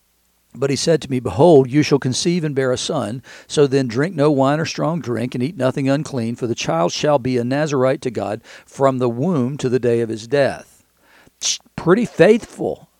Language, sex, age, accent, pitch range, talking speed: English, male, 60-79, American, 125-150 Hz, 210 wpm